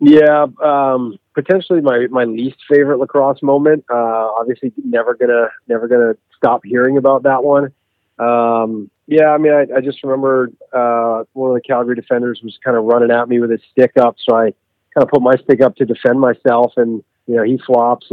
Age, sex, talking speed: 30-49, male, 200 wpm